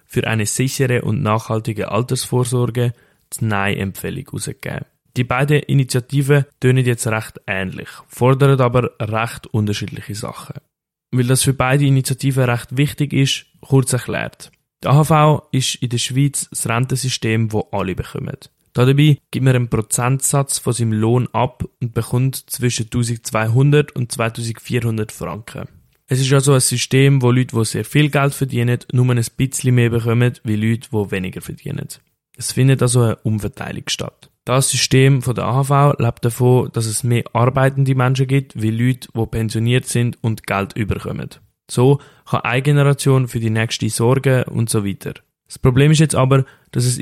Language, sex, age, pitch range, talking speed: German, male, 20-39, 115-135 Hz, 155 wpm